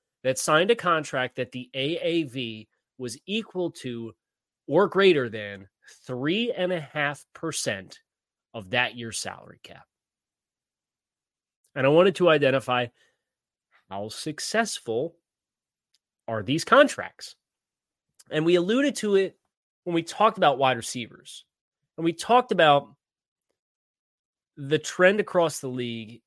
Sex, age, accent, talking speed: male, 30-49, American, 110 wpm